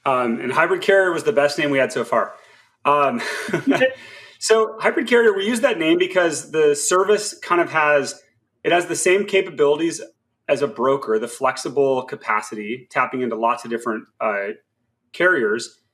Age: 30-49